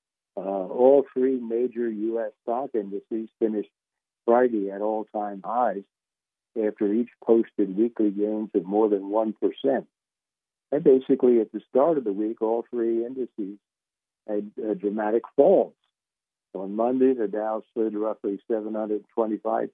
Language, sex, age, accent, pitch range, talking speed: English, male, 60-79, American, 105-115 Hz, 130 wpm